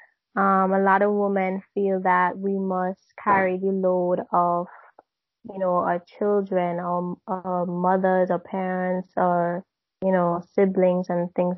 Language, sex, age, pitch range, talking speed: English, female, 20-39, 185-215 Hz, 145 wpm